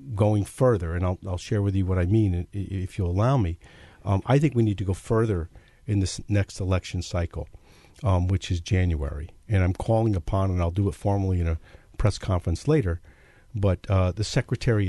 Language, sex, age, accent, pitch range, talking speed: English, male, 50-69, American, 90-110 Hz, 200 wpm